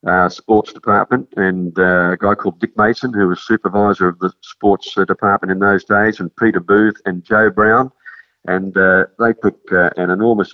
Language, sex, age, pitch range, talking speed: English, male, 50-69, 95-115 Hz, 195 wpm